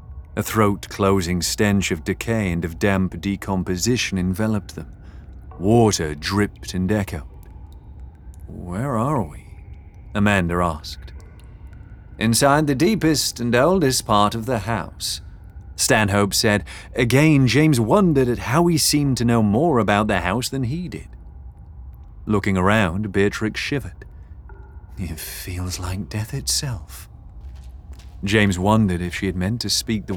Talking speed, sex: 130 wpm, male